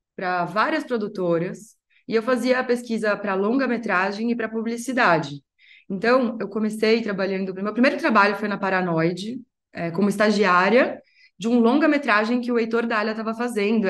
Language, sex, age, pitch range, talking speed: Portuguese, female, 20-39, 195-245 Hz, 145 wpm